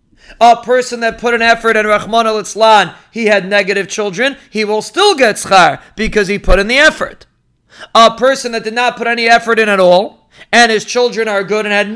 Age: 40-59